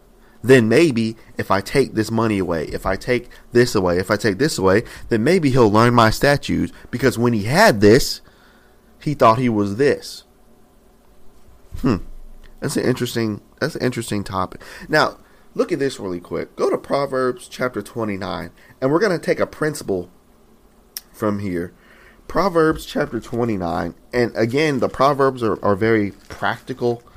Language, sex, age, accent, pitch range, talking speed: English, male, 30-49, American, 95-125 Hz, 165 wpm